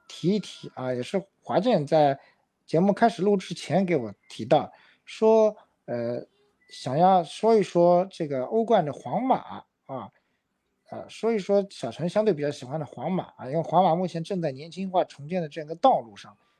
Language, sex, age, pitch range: Chinese, male, 50-69, 145-200 Hz